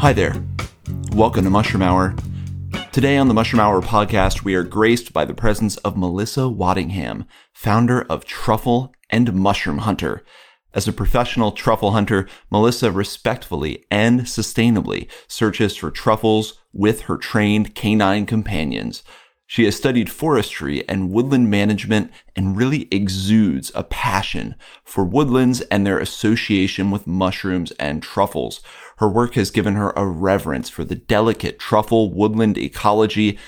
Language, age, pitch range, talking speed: English, 30-49, 95-115 Hz, 140 wpm